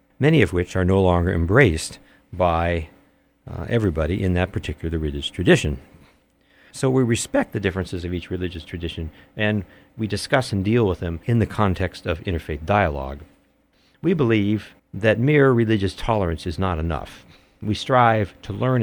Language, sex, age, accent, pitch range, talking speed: English, male, 50-69, American, 85-110 Hz, 160 wpm